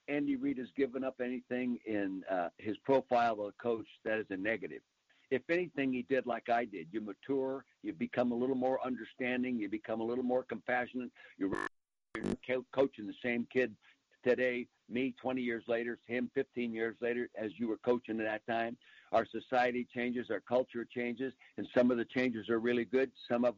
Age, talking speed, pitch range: 60-79, 190 wpm, 115-135 Hz